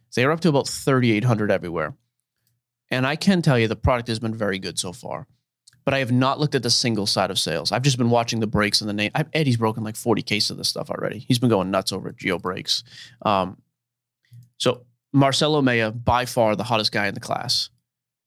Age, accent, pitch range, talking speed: 30-49, American, 110-130 Hz, 225 wpm